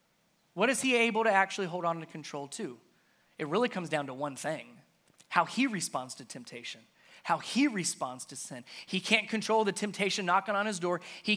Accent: American